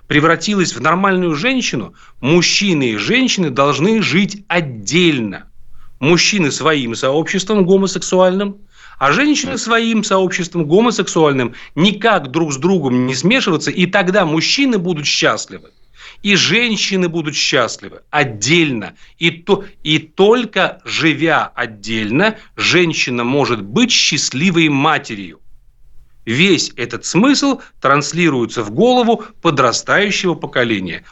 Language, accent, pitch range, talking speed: Russian, native, 140-195 Hz, 100 wpm